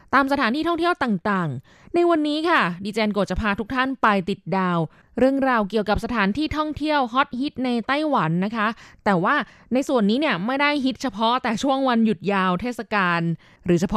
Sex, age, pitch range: female, 20-39, 190-255 Hz